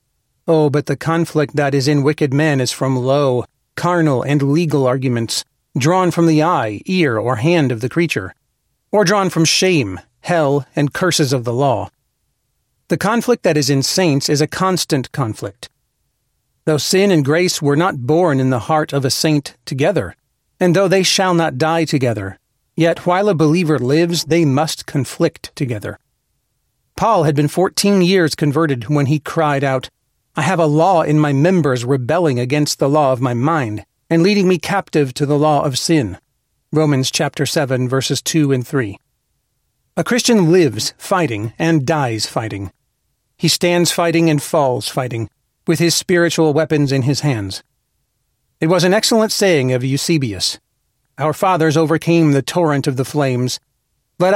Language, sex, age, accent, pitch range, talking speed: English, male, 40-59, American, 135-170 Hz, 170 wpm